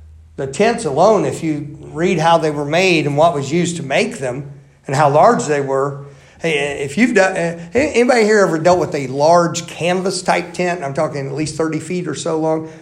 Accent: American